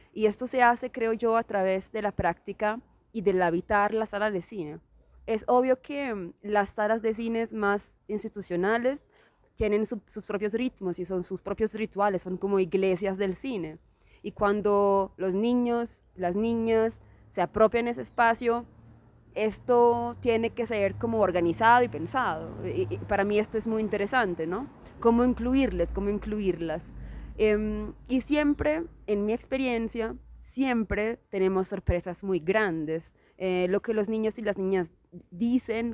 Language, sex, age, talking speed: Spanish, female, 20-39, 155 wpm